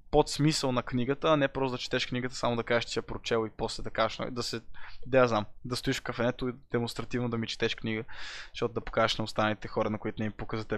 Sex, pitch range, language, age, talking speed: male, 125-190 Hz, Bulgarian, 20-39, 255 wpm